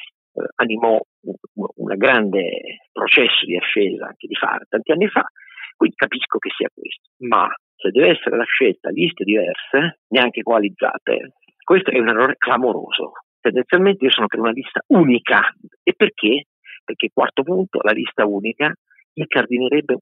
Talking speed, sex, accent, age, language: 155 wpm, male, native, 50-69, Italian